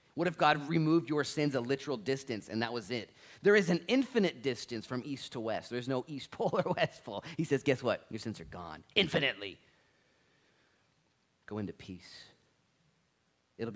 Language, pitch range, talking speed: English, 105-155 Hz, 185 wpm